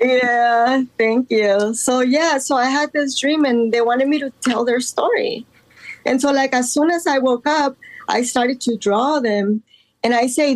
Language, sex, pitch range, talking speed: English, female, 205-260 Hz, 200 wpm